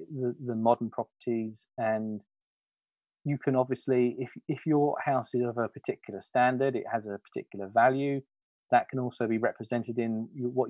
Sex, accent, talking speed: male, British, 165 wpm